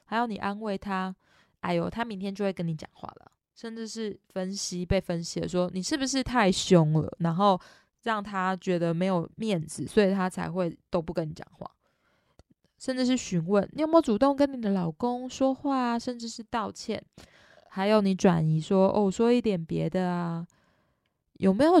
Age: 20-39